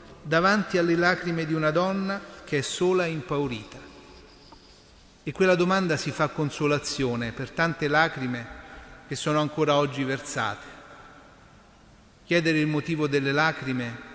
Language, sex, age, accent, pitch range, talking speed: Italian, male, 40-59, native, 130-165 Hz, 125 wpm